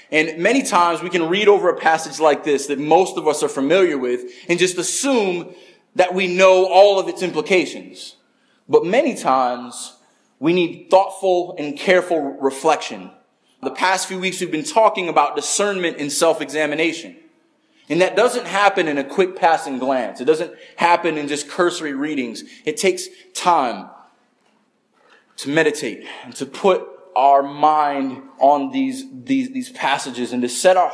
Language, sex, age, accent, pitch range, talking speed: English, male, 30-49, American, 145-190 Hz, 160 wpm